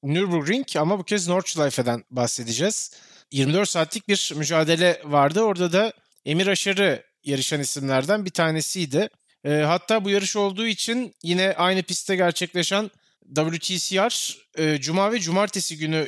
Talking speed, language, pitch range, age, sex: 130 wpm, Turkish, 145-190 Hz, 30-49, male